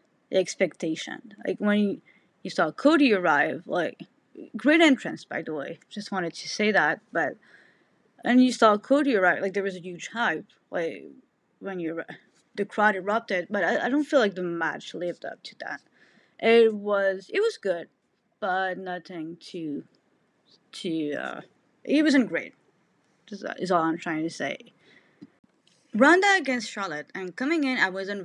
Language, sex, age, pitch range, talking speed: English, female, 20-39, 170-240 Hz, 160 wpm